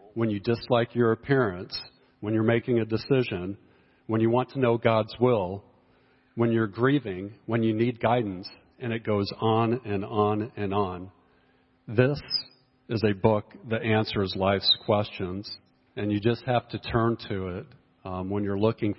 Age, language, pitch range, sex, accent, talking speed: 50-69, English, 100-120 Hz, male, American, 165 wpm